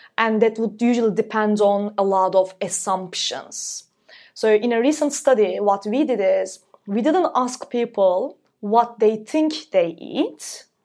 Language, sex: English, female